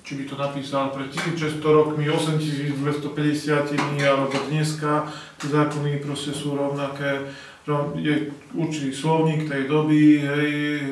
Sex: male